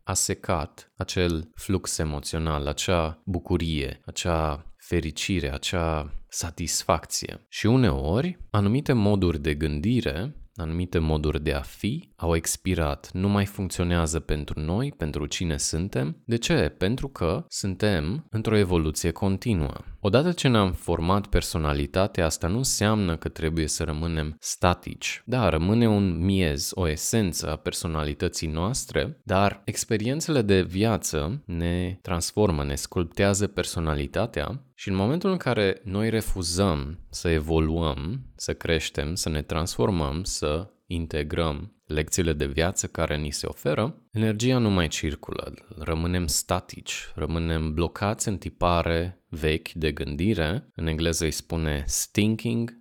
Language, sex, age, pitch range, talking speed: Romanian, male, 20-39, 80-105 Hz, 125 wpm